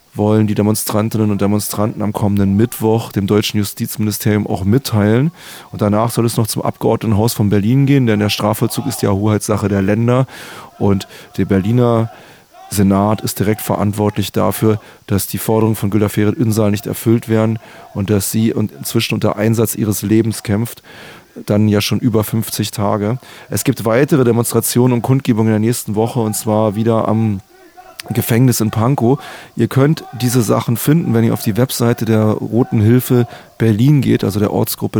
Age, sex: 30-49, male